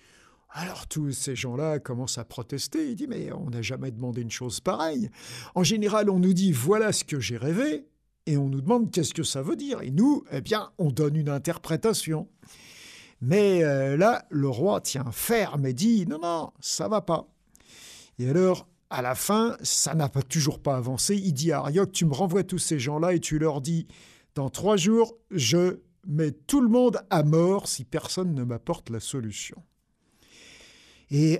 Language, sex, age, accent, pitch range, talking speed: French, male, 50-69, French, 130-185 Hz, 210 wpm